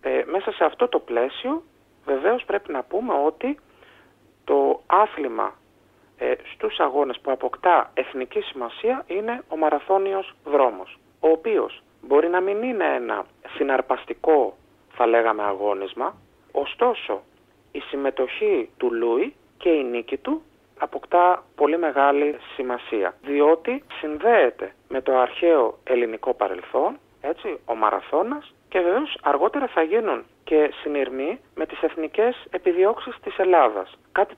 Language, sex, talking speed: Greek, male, 120 wpm